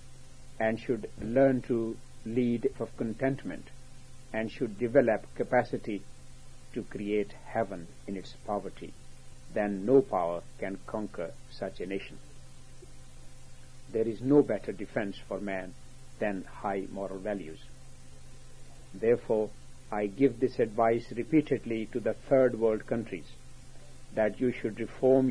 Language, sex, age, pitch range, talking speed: English, male, 60-79, 95-125 Hz, 120 wpm